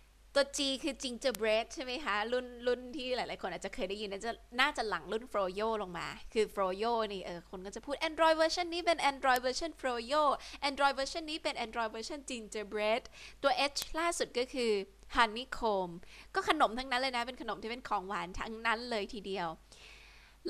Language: Thai